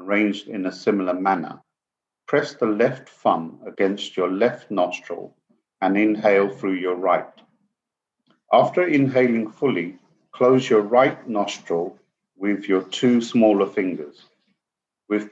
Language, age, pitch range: English, 50-69, 95-120 Hz